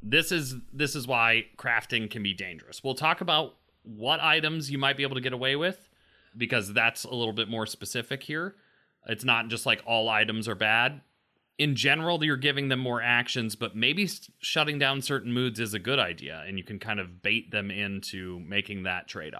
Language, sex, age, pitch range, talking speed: English, male, 30-49, 105-145 Hz, 205 wpm